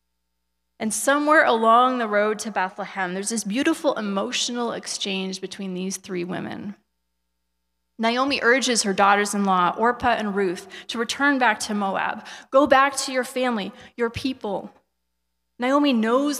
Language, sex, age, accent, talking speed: English, female, 20-39, American, 135 wpm